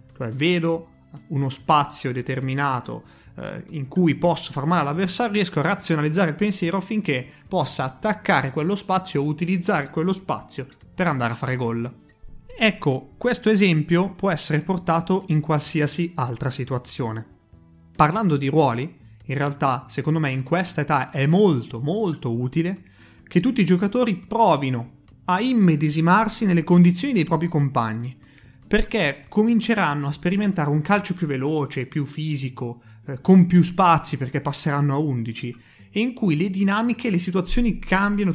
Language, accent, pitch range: Italian, native, 135-190 Hz